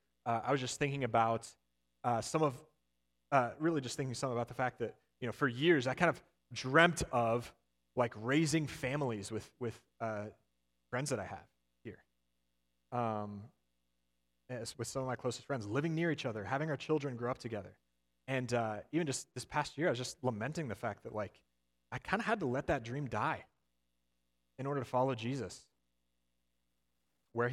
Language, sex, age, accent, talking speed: English, male, 30-49, American, 185 wpm